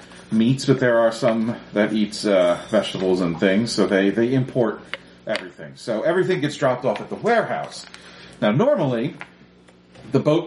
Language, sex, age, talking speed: English, male, 40-59, 160 wpm